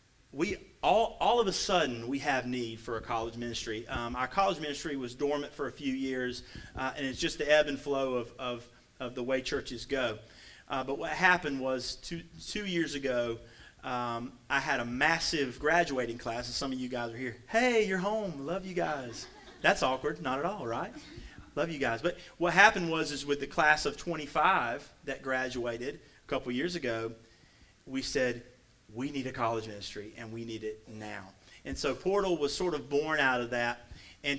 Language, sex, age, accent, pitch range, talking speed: English, male, 30-49, American, 120-150 Hz, 200 wpm